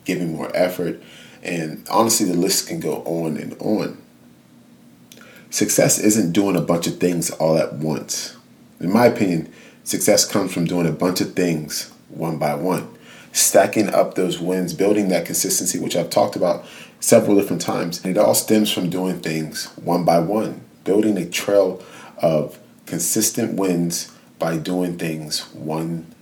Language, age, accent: English, 30-49, American